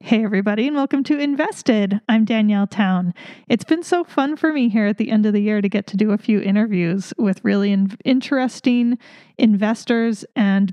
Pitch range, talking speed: 200-235 Hz, 190 wpm